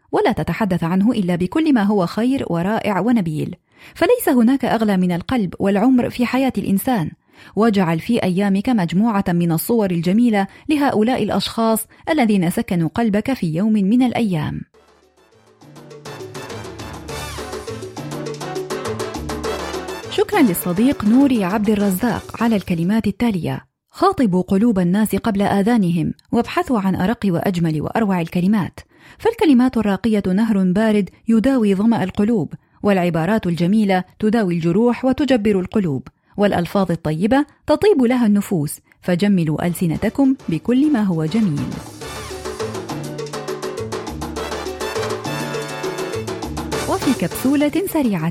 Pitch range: 185-245 Hz